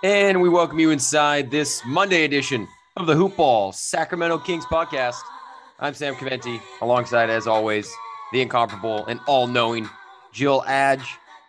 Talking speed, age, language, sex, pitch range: 135 wpm, 30-49, English, male, 115-140 Hz